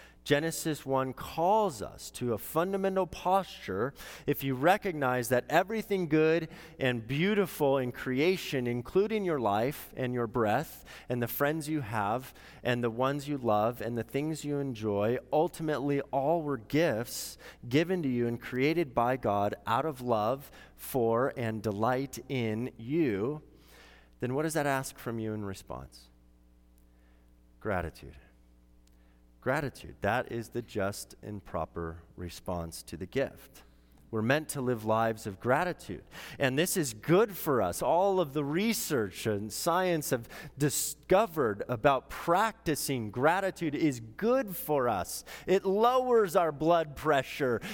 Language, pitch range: English, 115-175 Hz